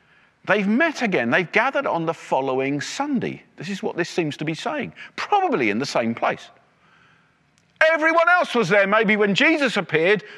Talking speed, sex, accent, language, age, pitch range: 175 wpm, male, British, English, 40-59, 185-280 Hz